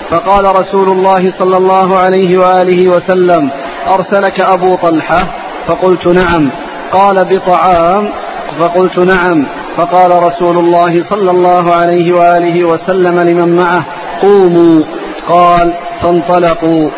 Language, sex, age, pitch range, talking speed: Arabic, male, 40-59, 175-190 Hz, 105 wpm